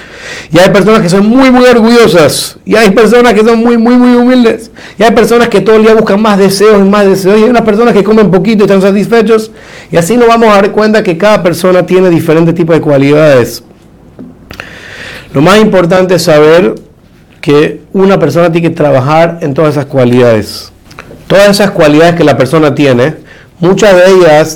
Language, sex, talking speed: Spanish, male, 195 wpm